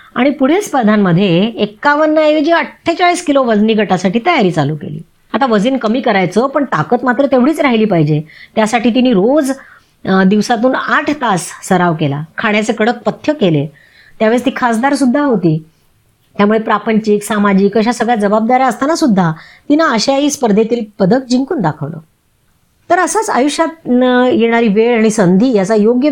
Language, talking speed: Marathi, 140 wpm